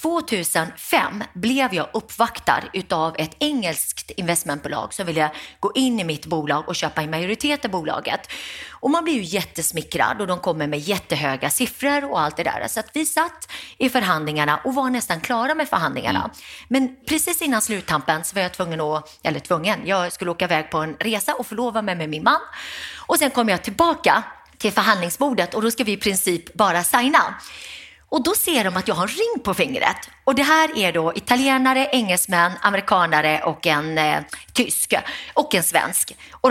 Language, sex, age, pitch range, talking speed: Swedish, female, 30-49, 165-260 Hz, 185 wpm